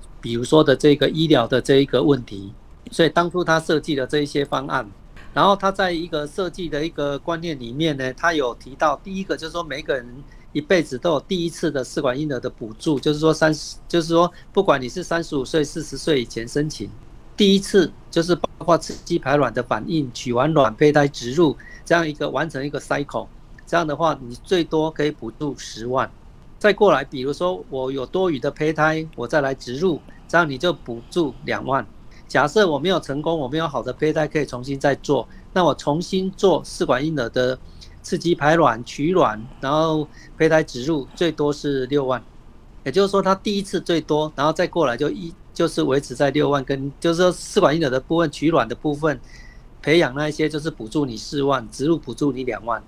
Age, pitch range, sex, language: 50-69, 135-170 Hz, male, Chinese